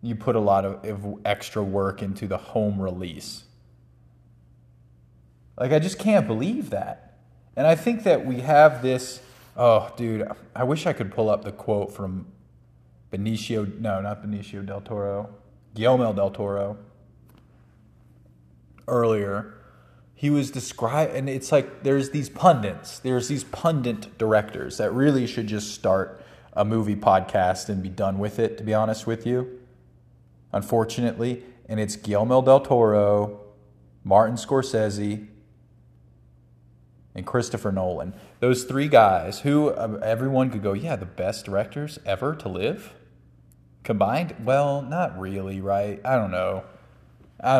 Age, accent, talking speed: 20-39, American, 140 wpm